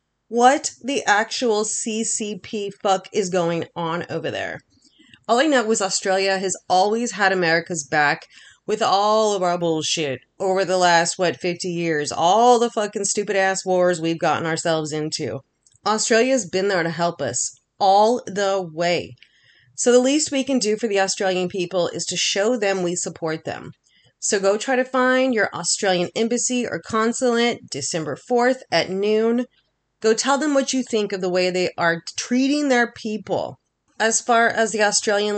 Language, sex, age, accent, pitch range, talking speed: English, female, 30-49, American, 175-220 Hz, 170 wpm